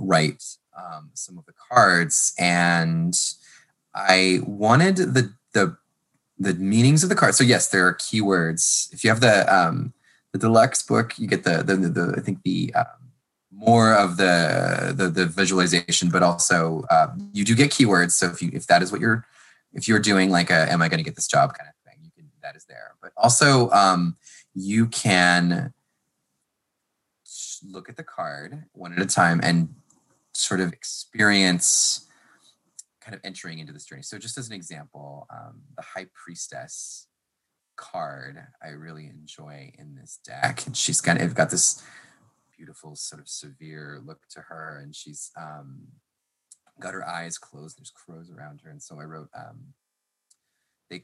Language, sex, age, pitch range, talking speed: English, male, 20-39, 80-115 Hz, 175 wpm